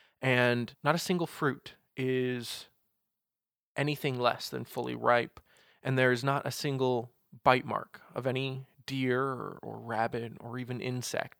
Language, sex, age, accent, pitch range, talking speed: English, male, 20-39, American, 120-135 Hz, 145 wpm